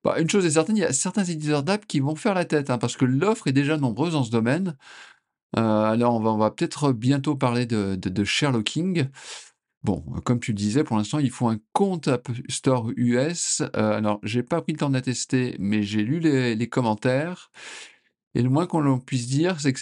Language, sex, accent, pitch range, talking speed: French, male, French, 115-150 Hz, 235 wpm